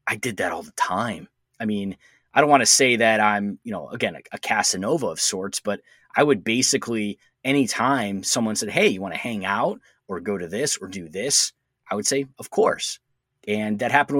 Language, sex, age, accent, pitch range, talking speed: English, male, 20-39, American, 105-135 Hz, 215 wpm